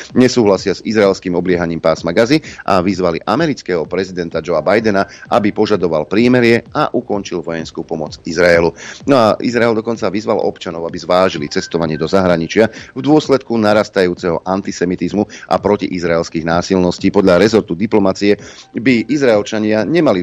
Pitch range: 90-115 Hz